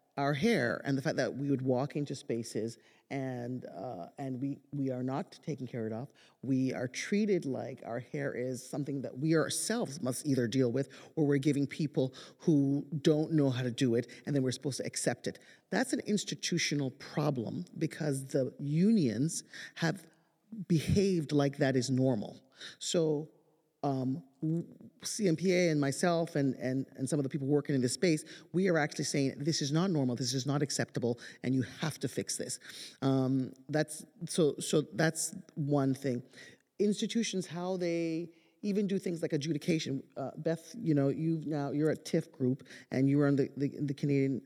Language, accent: English, American